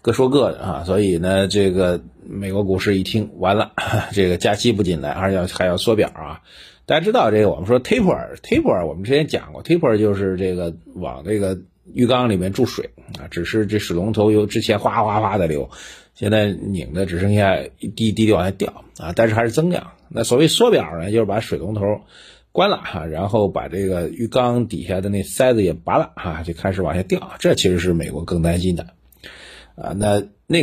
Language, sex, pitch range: Chinese, male, 90-110 Hz